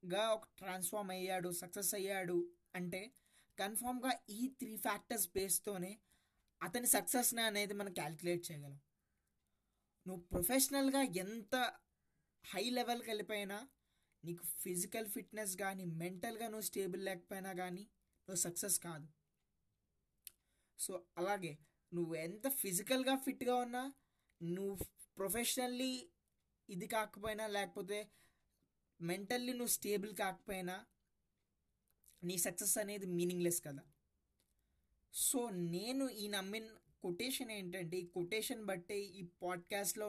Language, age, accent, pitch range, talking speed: Telugu, 20-39, native, 175-215 Hz, 100 wpm